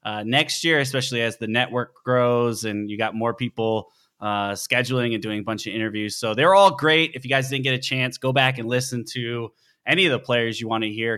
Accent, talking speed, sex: American, 240 wpm, male